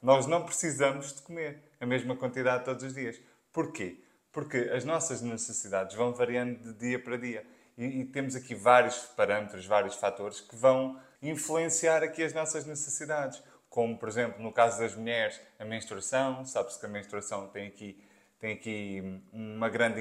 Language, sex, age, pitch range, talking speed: Portuguese, male, 20-39, 110-150 Hz, 160 wpm